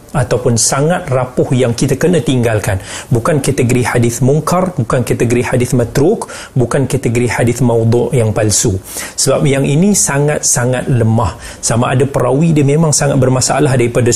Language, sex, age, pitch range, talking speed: Malay, male, 40-59, 120-145 Hz, 145 wpm